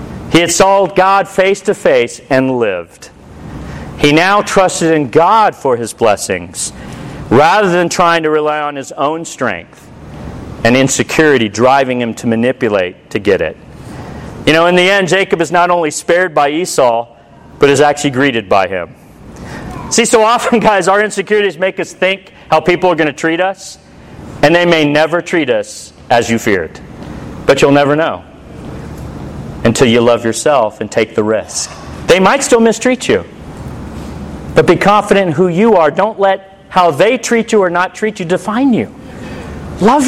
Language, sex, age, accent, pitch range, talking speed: English, male, 40-59, American, 140-205 Hz, 170 wpm